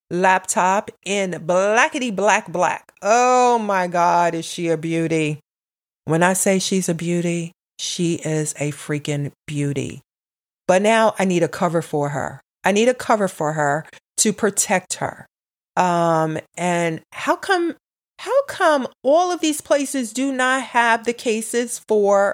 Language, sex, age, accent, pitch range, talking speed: English, female, 40-59, American, 175-240 Hz, 150 wpm